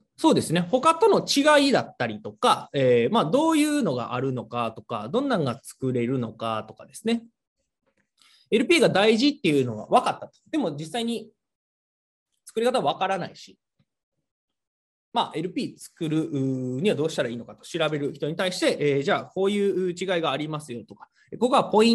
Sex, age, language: male, 20-39, Japanese